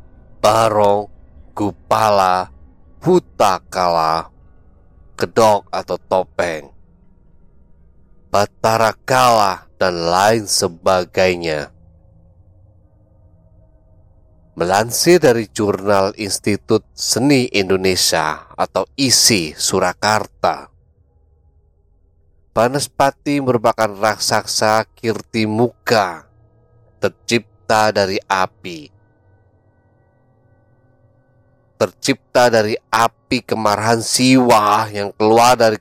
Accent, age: native, 30-49